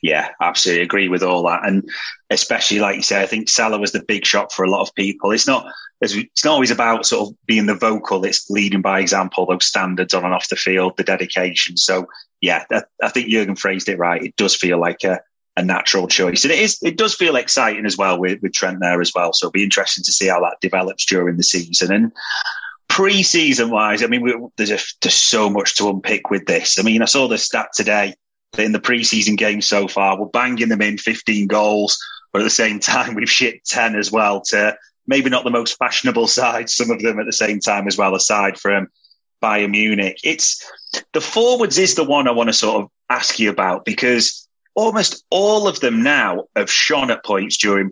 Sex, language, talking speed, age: male, English, 225 wpm, 30-49